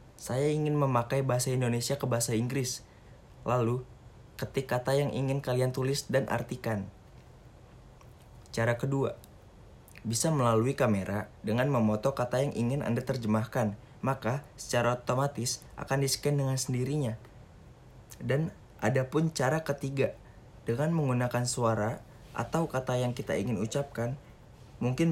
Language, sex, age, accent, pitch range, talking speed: Indonesian, male, 20-39, native, 115-135 Hz, 120 wpm